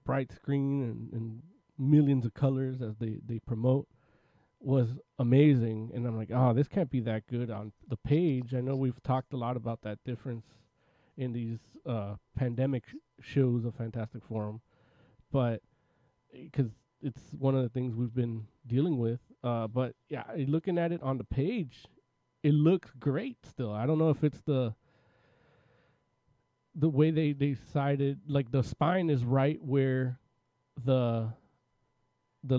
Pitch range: 120-140 Hz